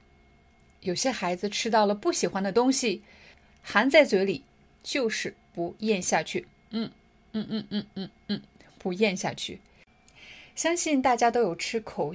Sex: female